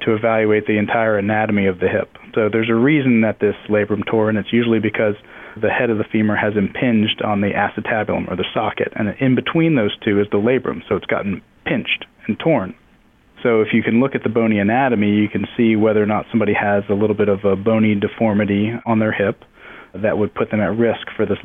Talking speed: 230 wpm